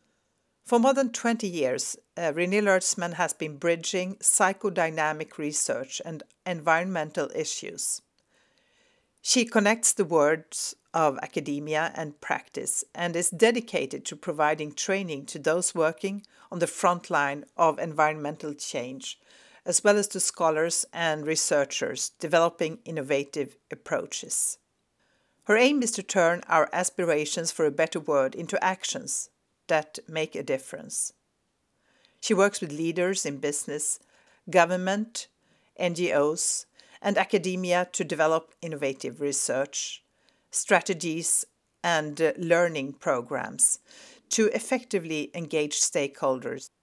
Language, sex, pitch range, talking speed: Swedish, female, 155-200 Hz, 115 wpm